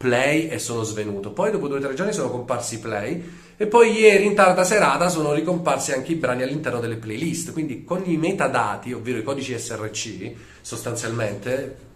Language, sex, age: Italian, male, 30-49